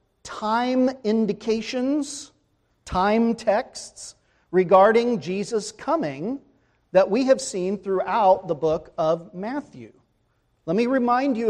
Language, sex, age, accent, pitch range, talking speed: English, male, 40-59, American, 165-210 Hz, 105 wpm